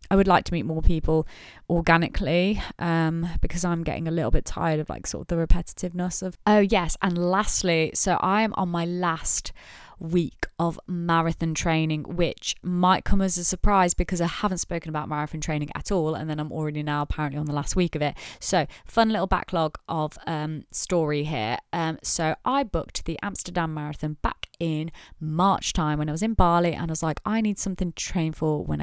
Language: English